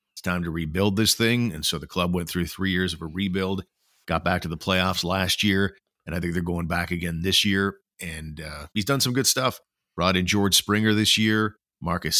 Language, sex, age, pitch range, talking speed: English, male, 40-59, 85-105 Hz, 225 wpm